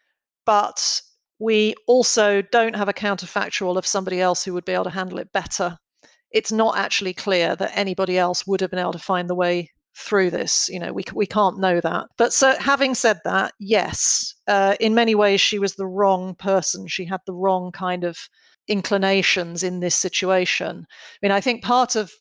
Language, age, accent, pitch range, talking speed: English, 40-59, British, 180-210 Hz, 195 wpm